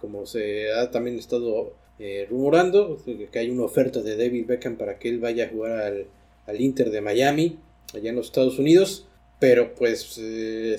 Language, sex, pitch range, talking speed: Spanish, male, 115-170 Hz, 185 wpm